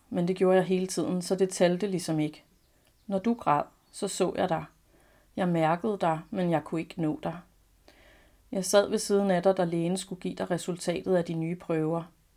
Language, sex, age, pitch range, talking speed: Danish, female, 40-59, 170-195 Hz, 210 wpm